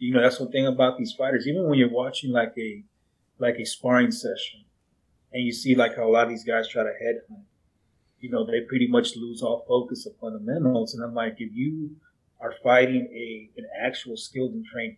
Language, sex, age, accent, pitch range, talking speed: English, male, 30-49, American, 115-155 Hz, 215 wpm